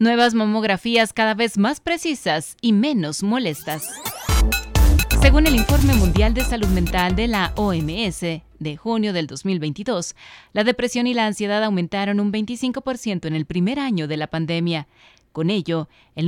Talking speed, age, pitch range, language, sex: 150 wpm, 30-49, 160-220 Hz, Spanish, female